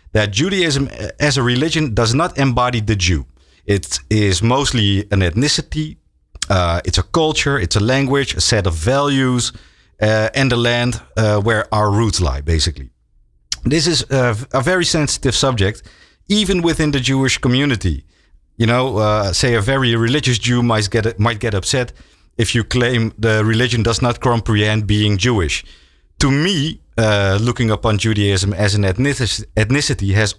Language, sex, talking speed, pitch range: Dutch, male, 160 wpm, 100-135 Hz